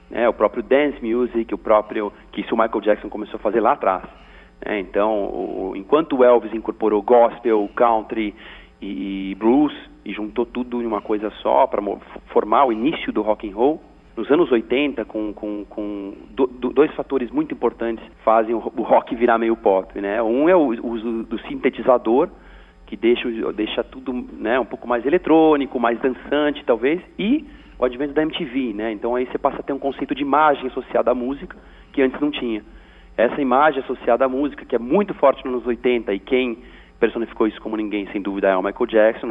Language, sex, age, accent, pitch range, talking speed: Portuguese, male, 40-59, Brazilian, 110-145 Hz, 195 wpm